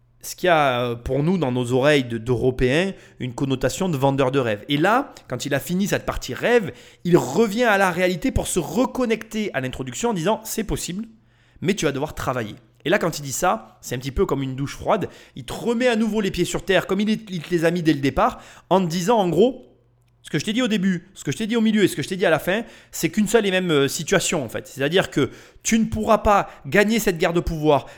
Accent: French